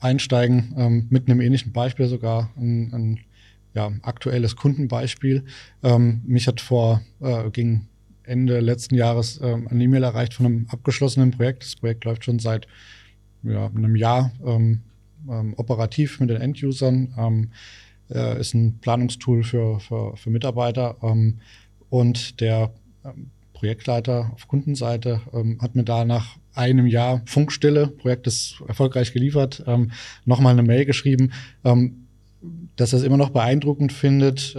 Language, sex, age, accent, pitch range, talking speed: German, male, 20-39, German, 115-130 Hz, 135 wpm